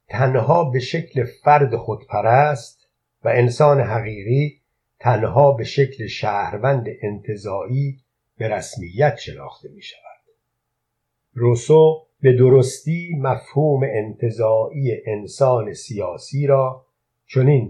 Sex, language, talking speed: male, Persian, 90 wpm